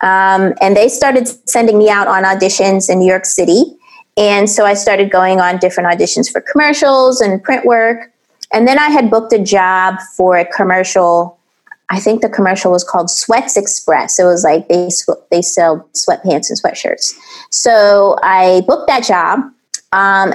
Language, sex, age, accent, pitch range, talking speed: English, female, 30-49, American, 180-230 Hz, 175 wpm